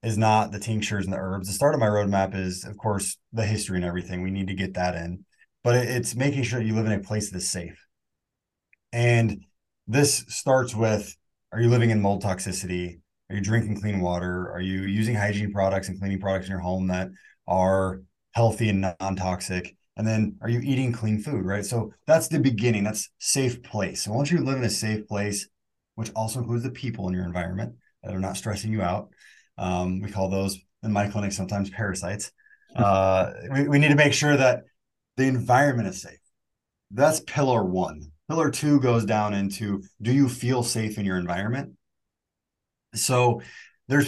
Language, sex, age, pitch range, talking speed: English, male, 20-39, 95-120 Hz, 195 wpm